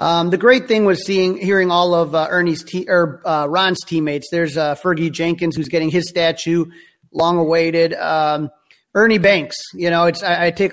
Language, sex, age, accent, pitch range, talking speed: English, male, 30-49, American, 155-185 Hz, 195 wpm